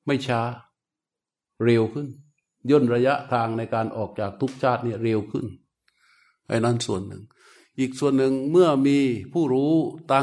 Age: 60-79